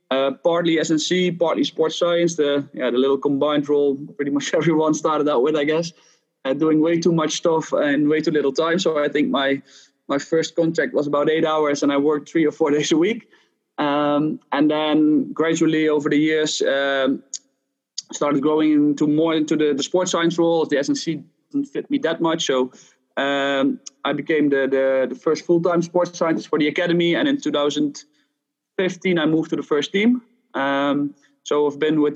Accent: Dutch